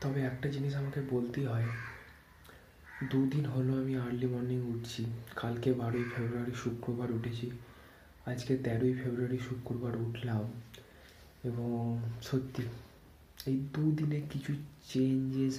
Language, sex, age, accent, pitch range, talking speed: Bengali, male, 30-49, native, 115-130 Hz, 110 wpm